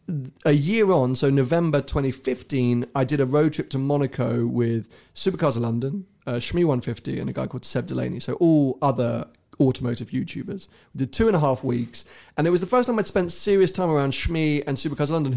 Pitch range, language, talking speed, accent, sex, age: 125-155 Hz, English, 205 wpm, British, male, 30-49